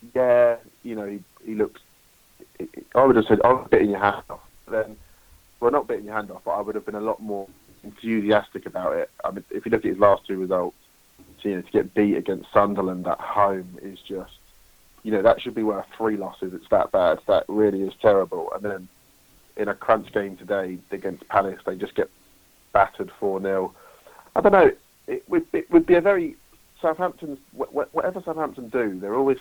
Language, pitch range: English, 100-135 Hz